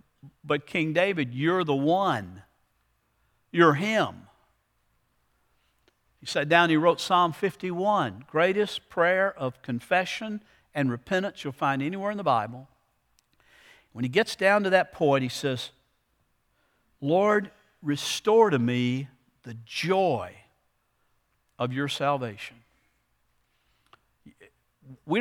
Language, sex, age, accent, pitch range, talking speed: English, male, 60-79, American, 150-220 Hz, 110 wpm